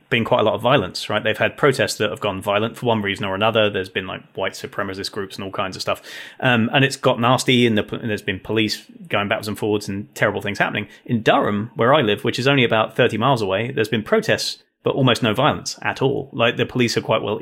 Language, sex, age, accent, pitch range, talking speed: English, male, 30-49, British, 110-130 Hz, 260 wpm